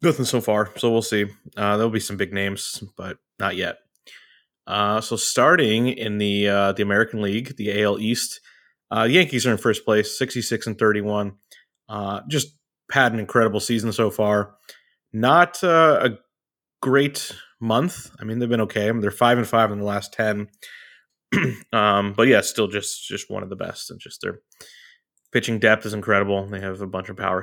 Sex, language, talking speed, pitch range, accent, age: male, English, 195 wpm, 100-115 Hz, American, 20-39